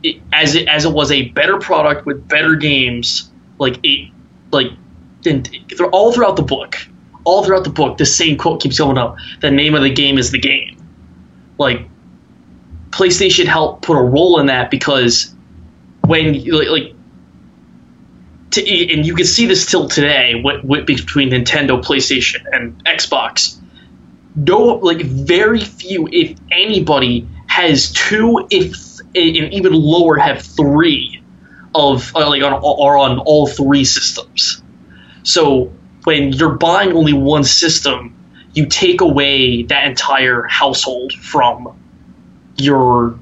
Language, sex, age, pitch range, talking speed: English, male, 20-39, 120-165 Hz, 140 wpm